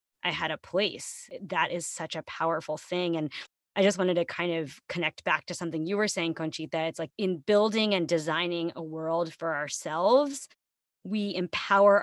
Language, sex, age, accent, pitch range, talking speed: English, female, 20-39, American, 155-180 Hz, 185 wpm